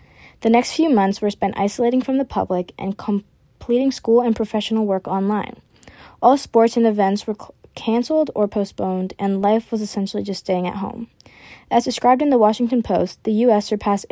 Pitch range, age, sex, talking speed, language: 195-230 Hz, 20-39, female, 180 wpm, English